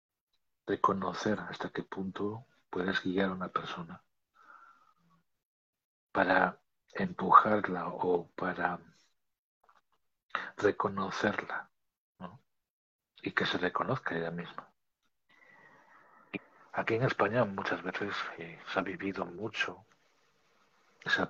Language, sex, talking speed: Spanish, male, 85 wpm